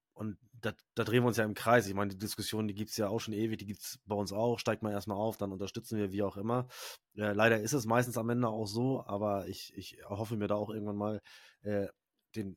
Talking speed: 265 wpm